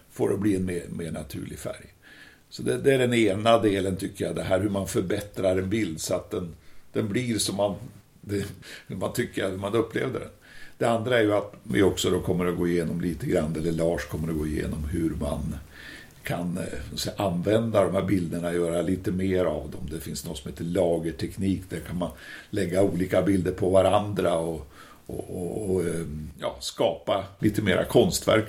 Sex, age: male, 60-79